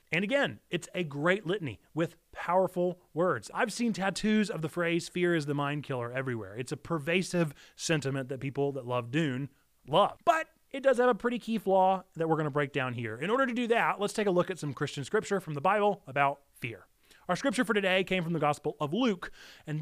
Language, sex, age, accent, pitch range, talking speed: English, male, 30-49, American, 140-205 Hz, 225 wpm